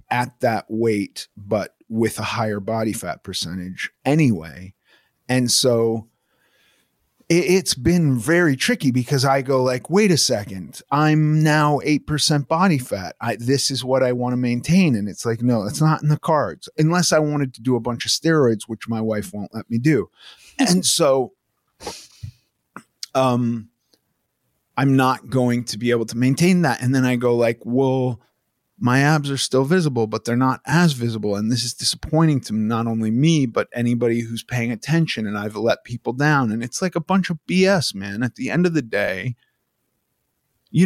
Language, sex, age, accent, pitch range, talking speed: English, male, 30-49, American, 115-145 Hz, 185 wpm